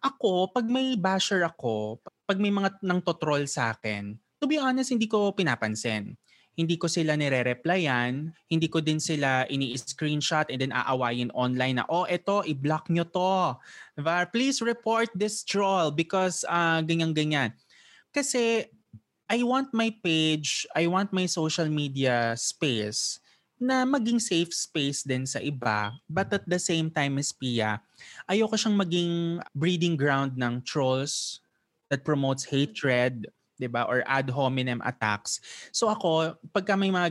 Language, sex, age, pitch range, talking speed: English, male, 20-39, 130-190 Hz, 145 wpm